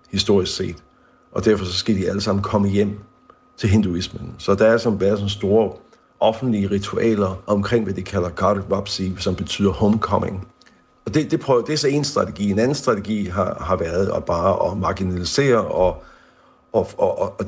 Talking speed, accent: 190 wpm, native